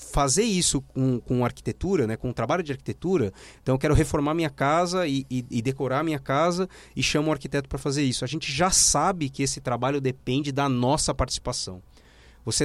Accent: Brazilian